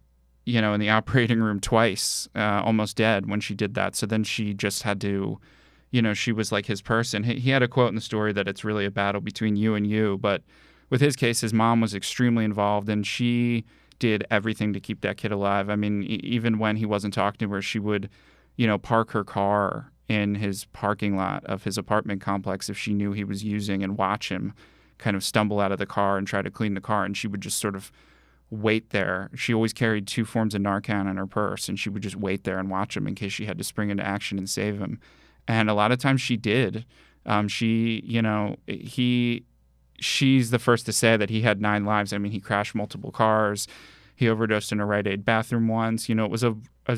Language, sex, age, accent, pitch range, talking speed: English, male, 30-49, American, 100-115 Hz, 240 wpm